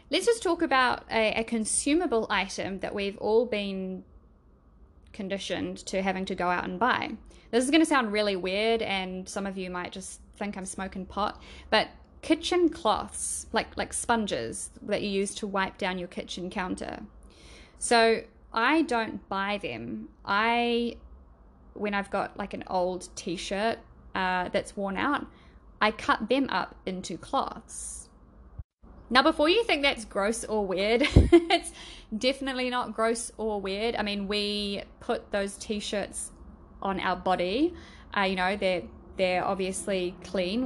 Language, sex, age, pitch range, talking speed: English, female, 10-29, 190-230 Hz, 155 wpm